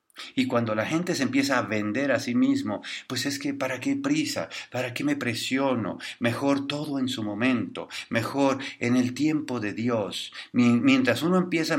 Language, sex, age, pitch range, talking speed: English, male, 50-69, 115-160 Hz, 185 wpm